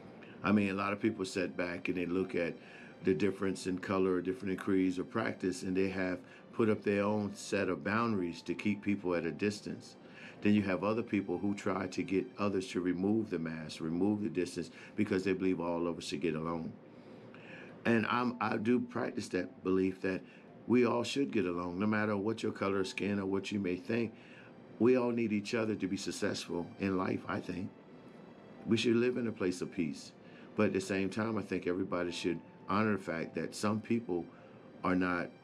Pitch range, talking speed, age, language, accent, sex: 90-105 Hz, 210 wpm, 50-69, English, American, male